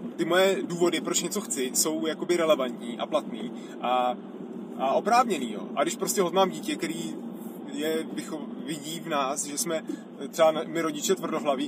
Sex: male